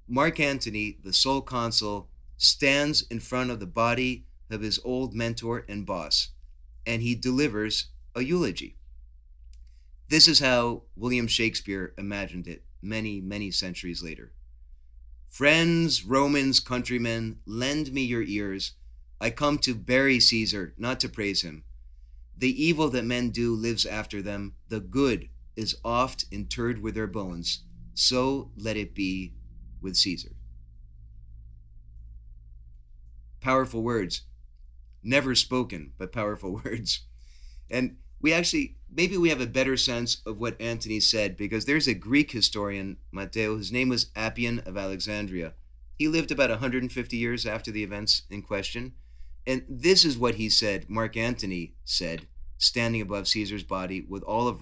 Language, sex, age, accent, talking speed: English, male, 30-49, American, 140 wpm